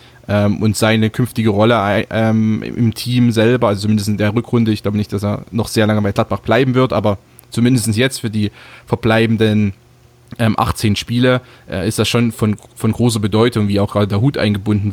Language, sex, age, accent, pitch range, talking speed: German, male, 20-39, German, 105-125 Hz, 180 wpm